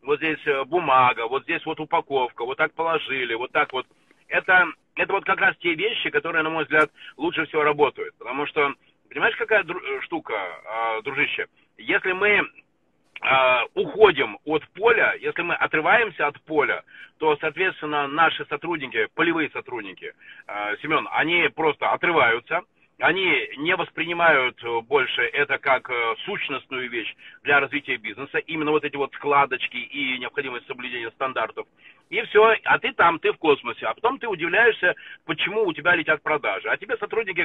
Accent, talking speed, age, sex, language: native, 155 wpm, 30-49, male, Russian